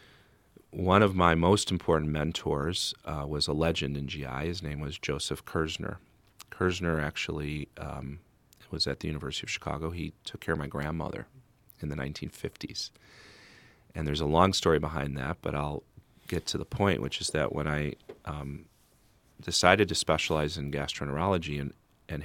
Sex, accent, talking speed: male, American, 165 wpm